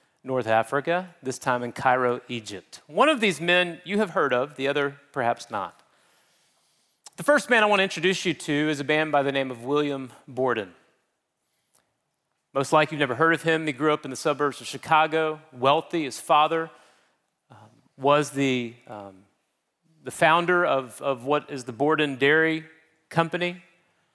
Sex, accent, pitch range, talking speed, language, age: male, American, 140-180 Hz, 170 wpm, English, 40-59